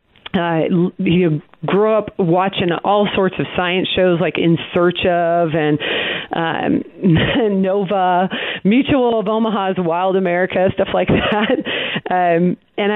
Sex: female